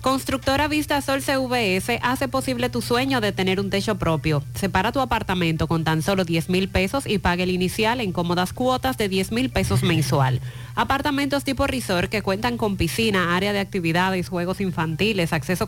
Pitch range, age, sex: 160-235 Hz, 30-49, female